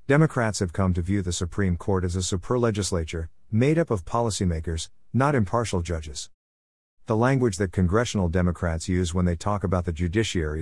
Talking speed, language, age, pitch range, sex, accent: 170 wpm, English, 50-69, 85-110 Hz, male, American